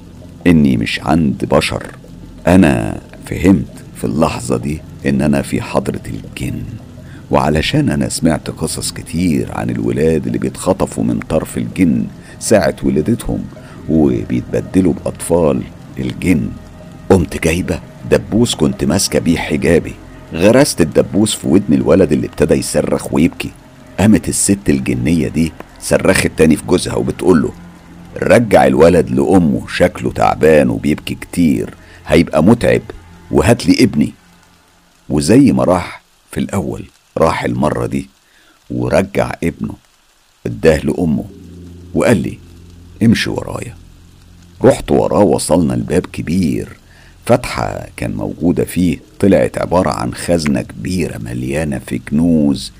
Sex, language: male, Arabic